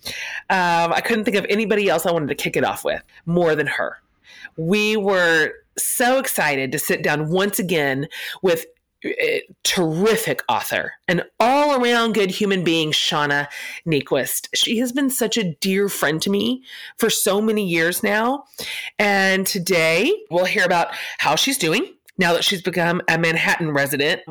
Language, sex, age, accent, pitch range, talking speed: English, female, 30-49, American, 165-230 Hz, 165 wpm